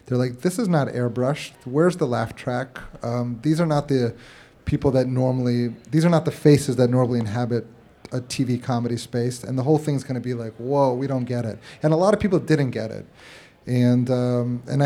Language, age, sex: English, 30-49, male